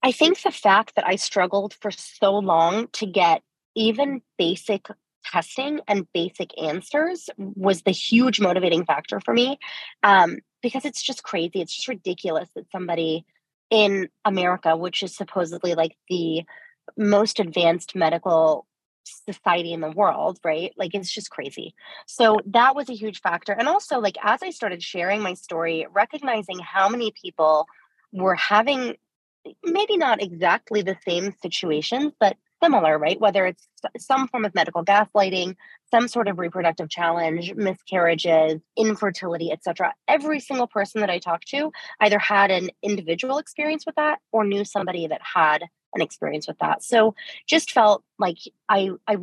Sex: female